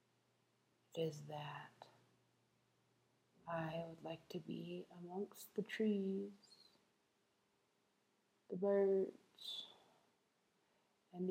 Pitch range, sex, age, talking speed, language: 170-200 Hz, female, 30-49, 70 wpm, English